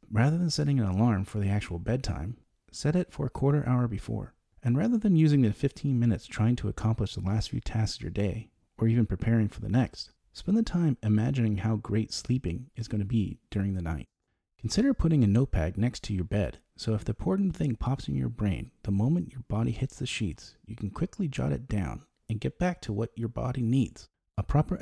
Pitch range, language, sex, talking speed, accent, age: 100-130 Hz, English, male, 225 wpm, American, 30-49